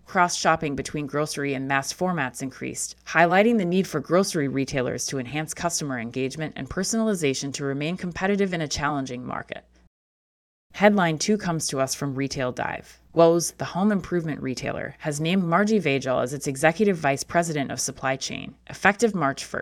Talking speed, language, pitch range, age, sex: 160 wpm, English, 135-180 Hz, 30-49, female